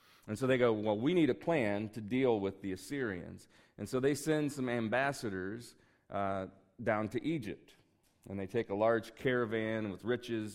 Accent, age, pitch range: American, 40-59, 100-125 Hz